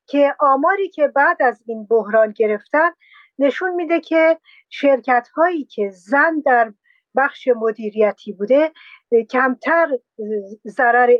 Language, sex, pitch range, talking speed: Persian, female, 225-300 Hz, 115 wpm